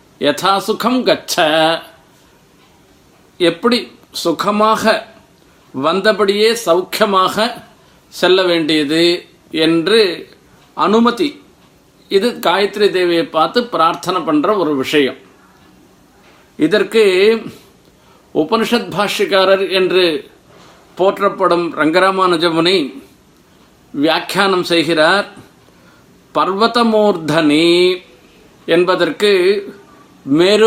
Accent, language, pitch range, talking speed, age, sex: native, Tamil, 180-225 Hz, 55 wpm, 50-69, male